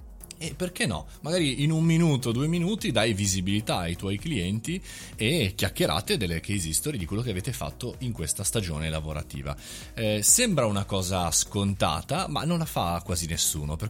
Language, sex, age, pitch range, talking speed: Italian, male, 30-49, 90-150 Hz, 175 wpm